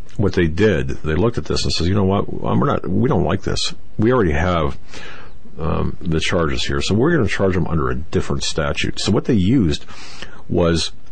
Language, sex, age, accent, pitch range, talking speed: English, male, 50-69, American, 80-105 Hz, 215 wpm